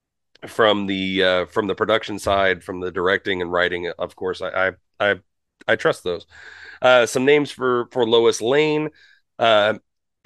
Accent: American